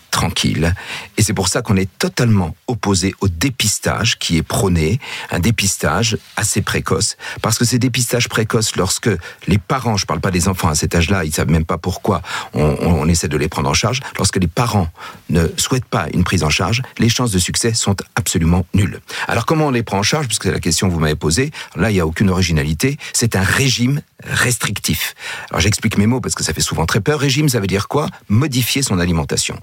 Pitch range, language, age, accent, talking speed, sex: 95-125 Hz, French, 50-69, French, 225 wpm, male